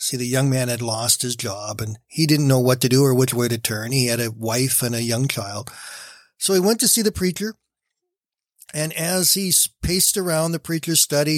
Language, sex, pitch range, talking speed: English, male, 125-155 Hz, 225 wpm